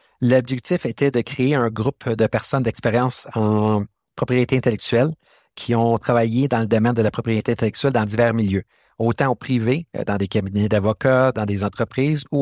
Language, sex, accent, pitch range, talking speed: French, male, Canadian, 110-130 Hz, 175 wpm